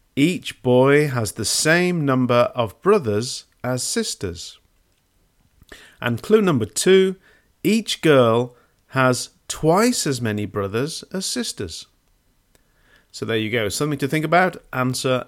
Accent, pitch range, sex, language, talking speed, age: British, 110-155 Hz, male, English, 125 wpm, 50-69